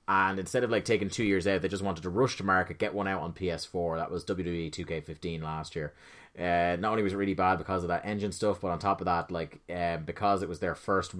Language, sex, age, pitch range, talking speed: English, male, 30-49, 85-100 Hz, 270 wpm